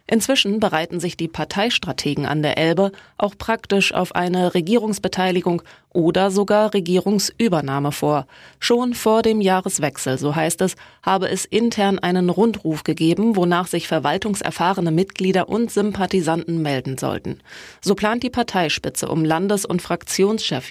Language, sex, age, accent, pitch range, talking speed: German, female, 20-39, German, 165-205 Hz, 135 wpm